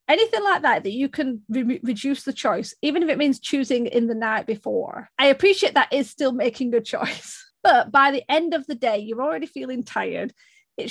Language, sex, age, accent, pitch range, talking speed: English, female, 30-49, British, 225-275 Hz, 215 wpm